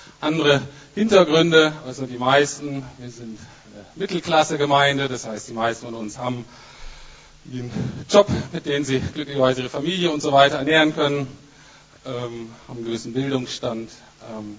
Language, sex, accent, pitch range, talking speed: German, male, German, 120-150 Hz, 145 wpm